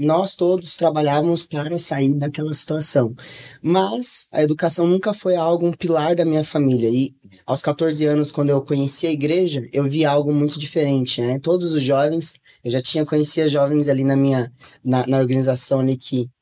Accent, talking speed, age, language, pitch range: Brazilian, 185 wpm, 20-39, Portuguese, 135-155 Hz